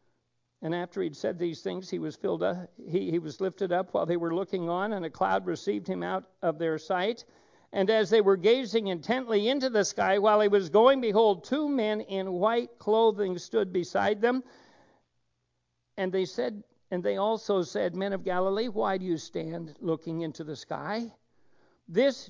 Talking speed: 190 wpm